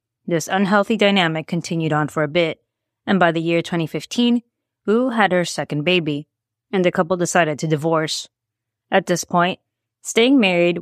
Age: 20-39